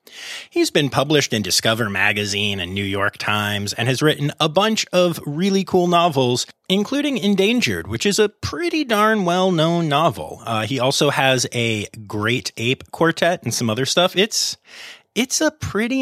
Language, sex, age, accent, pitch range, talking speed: English, male, 30-49, American, 125-185 Hz, 165 wpm